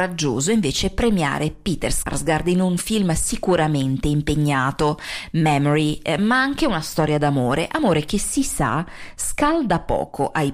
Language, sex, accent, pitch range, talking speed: Italian, female, native, 145-195 Hz, 125 wpm